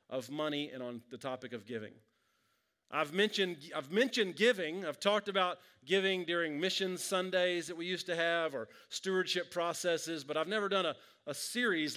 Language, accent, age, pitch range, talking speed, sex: English, American, 40-59, 160-215 Hz, 175 wpm, male